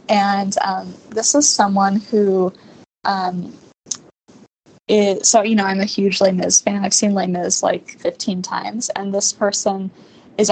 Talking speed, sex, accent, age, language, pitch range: 160 wpm, female, American, 10-29, English, 195-230 Hz